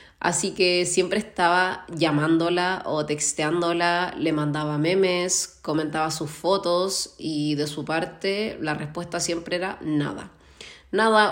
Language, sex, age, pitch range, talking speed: Spanish, female, 20-39, 150-175 Hz, 120 wpm